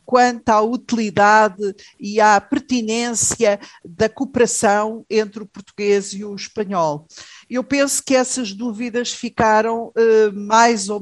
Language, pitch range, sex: Portuguese, 200-240 Hz, female